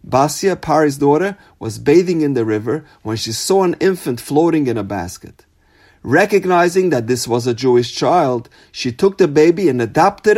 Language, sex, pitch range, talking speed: English, male, 115-165 Hz, 175 wpm